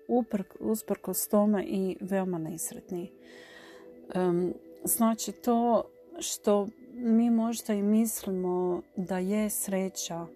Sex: female